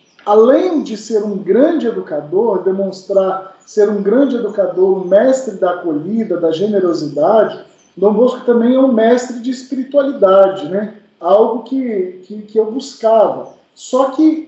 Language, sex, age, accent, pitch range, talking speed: Portuguese, male, 40-59, Brazilian, 200-265 Hz, 140 wpm